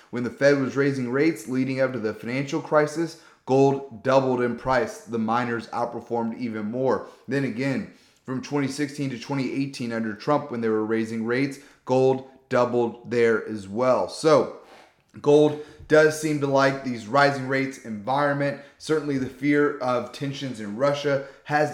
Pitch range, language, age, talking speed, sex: 115-140 Hz, English, 30-49, 155 wpm, male